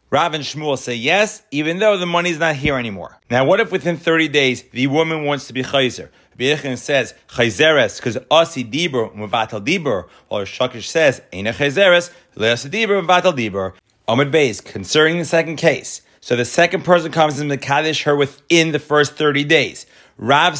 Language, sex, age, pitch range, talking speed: English, male, 30-49, 135-170 Hz, 180 wpm